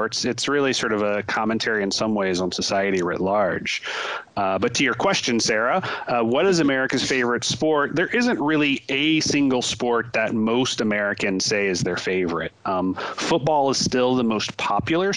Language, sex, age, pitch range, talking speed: English, male, 30-49, 95-125 Hz, 180 wpm